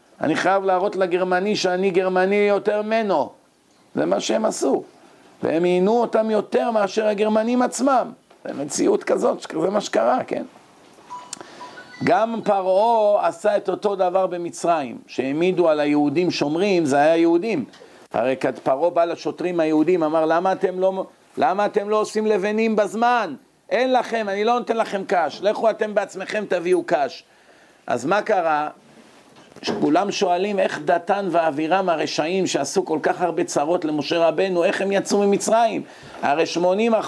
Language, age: Hebrew, 50-69